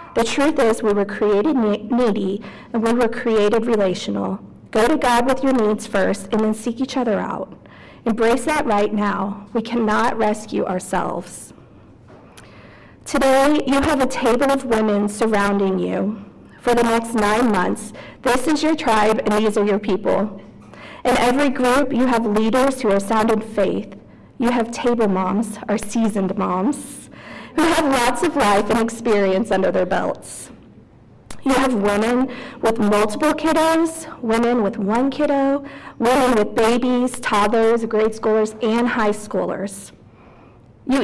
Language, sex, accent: English, female, American